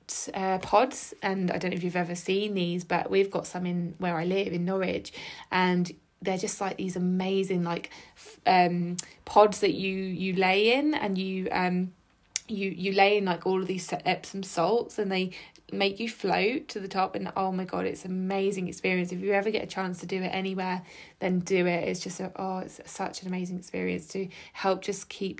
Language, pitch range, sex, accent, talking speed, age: English, 175-195 Hz, female, British, 210 wpm, 20-39